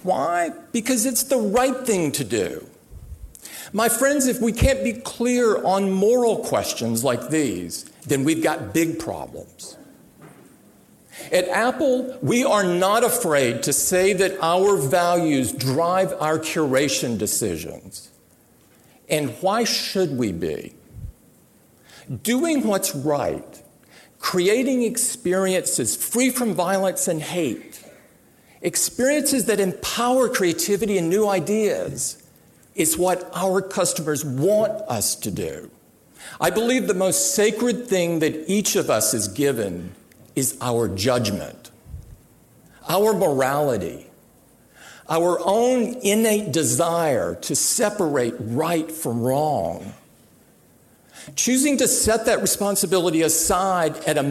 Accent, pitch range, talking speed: American, 160-230 Hz, 115 wpm